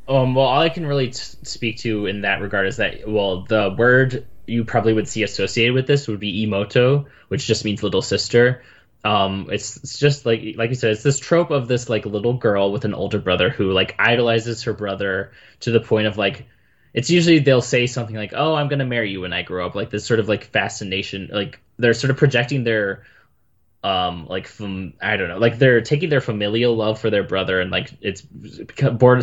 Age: 10-29